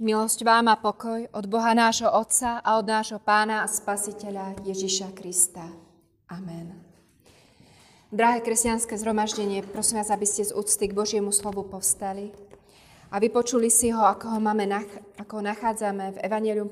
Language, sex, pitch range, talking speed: Slovak, female, 190-215 Hz, 150 wpm